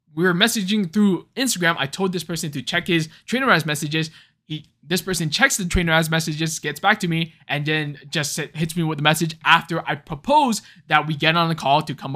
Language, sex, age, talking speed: English, male, 20-39, 220 wpm